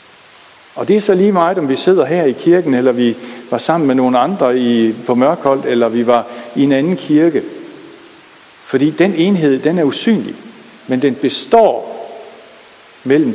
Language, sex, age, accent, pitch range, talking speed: Danish, male, 60-79, native, 120-185 Hz, 175 wpm